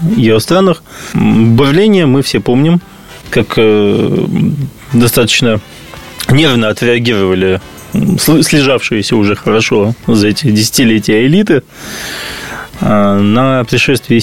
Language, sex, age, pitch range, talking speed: Russian, male, 20-39, 110-140 Hz, 80 wpm